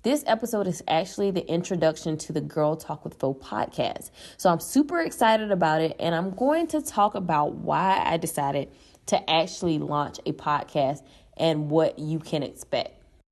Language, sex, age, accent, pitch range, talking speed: English, female, 20-39, American, 155-200 Hz, 170 wpm